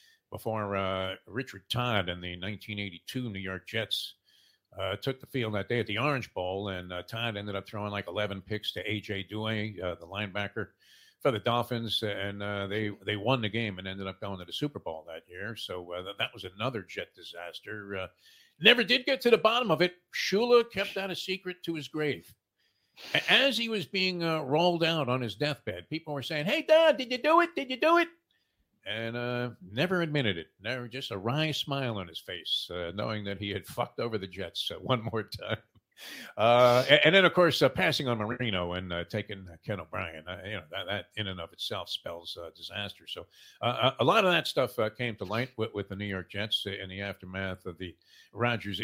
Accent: American